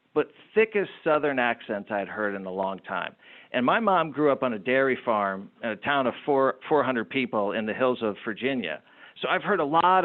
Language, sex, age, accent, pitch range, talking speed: English, male, 50-69, American, 130-190 Hz, 215 wpm